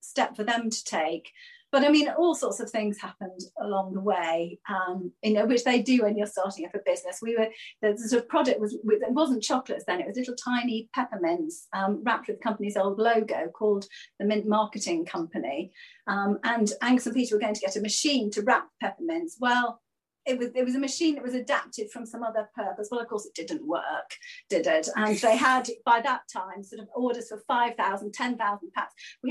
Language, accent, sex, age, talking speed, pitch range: English, British, female, 40-59, 215 wpm, 220-285 Hz